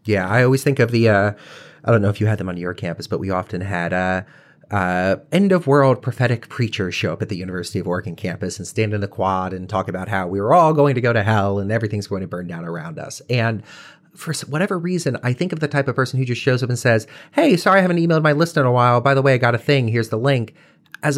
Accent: American